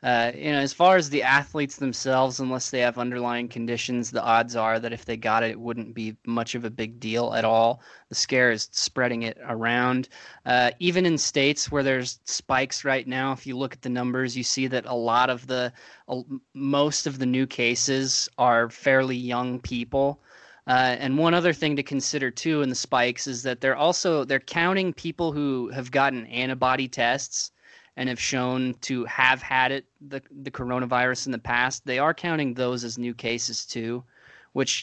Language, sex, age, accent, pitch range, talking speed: English, male, 20-39, American, 125-135 Hz, 200 wpm